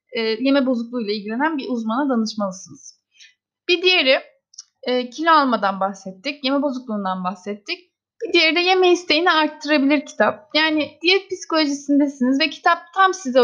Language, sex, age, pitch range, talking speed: Turkish, female, 30-49, 260-325 Hz, 125 wpm